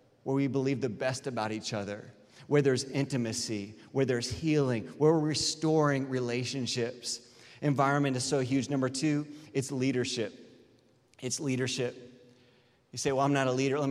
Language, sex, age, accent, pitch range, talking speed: English, male, 30-49, American, 125-150 Hz, 155 wpm